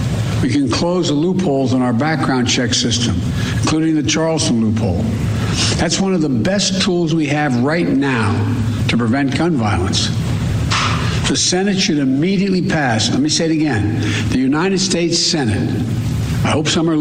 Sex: male